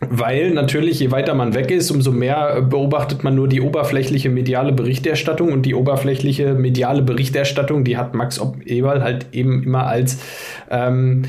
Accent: German